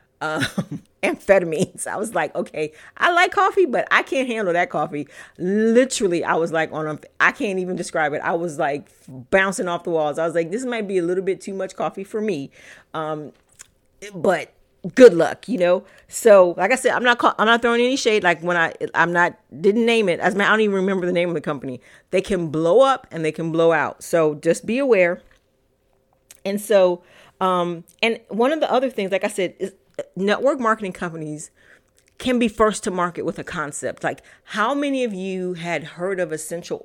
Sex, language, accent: female, English, American